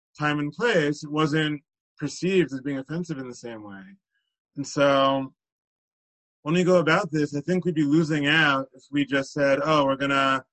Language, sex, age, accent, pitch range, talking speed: English, male, 30-49, American, 135-160 Hz, 195 wpm